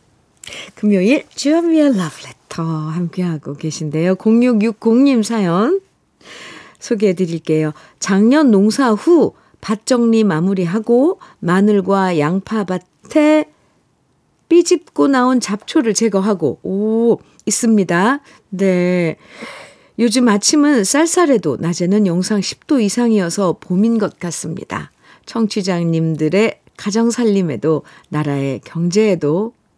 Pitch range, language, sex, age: 175-225 Hz, Korean, female, 50-69